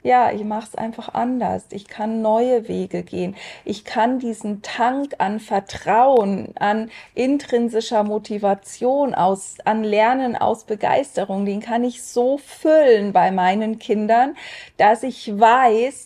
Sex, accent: female, German